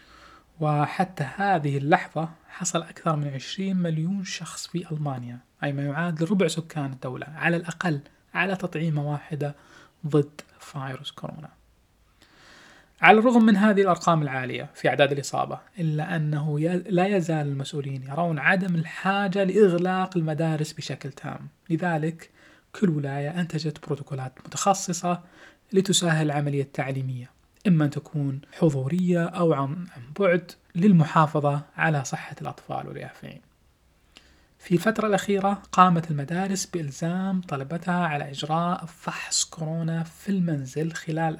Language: Arabic